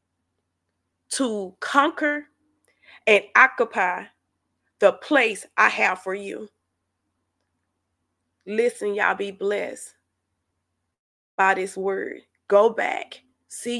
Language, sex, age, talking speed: English, female, 20-39, 85 wpm